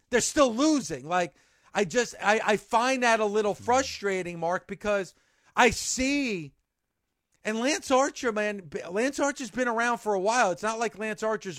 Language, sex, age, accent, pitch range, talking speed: English, male, 40-59, American, 175-220 Hz, 170 wpm